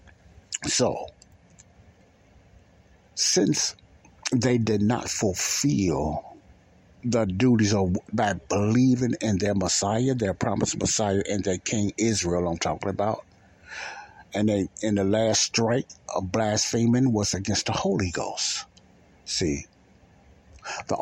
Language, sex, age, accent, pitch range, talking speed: English, male, 60-79, American, 90-110 Hz, 110 wpm